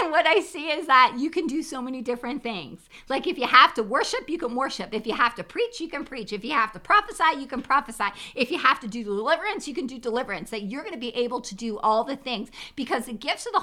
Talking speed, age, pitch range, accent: 275 wpm, 40-59, 200-255 Hz, American